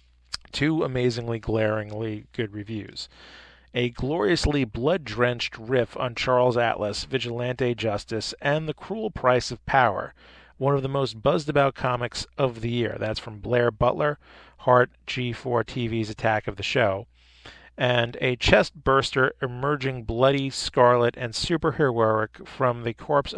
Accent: American